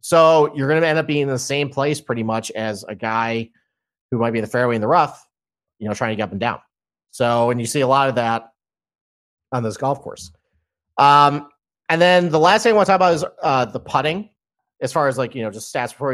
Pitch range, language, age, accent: 110-140 Hz, English, 30-49, American